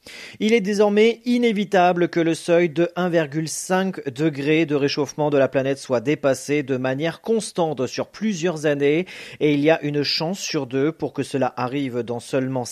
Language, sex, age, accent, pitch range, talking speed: French, male, 40-59, French, 135-185 Hz, 175 wpm